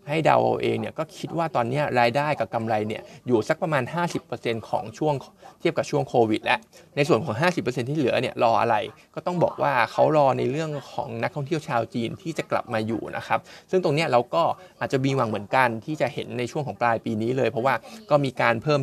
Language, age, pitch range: Thai, 20-39, 120-150 Hz